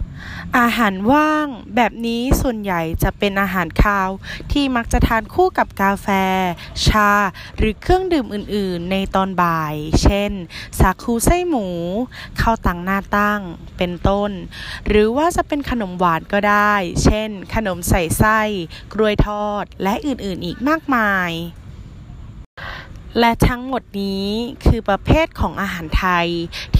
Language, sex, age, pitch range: Thai, female, 10-29, 190-240 Hz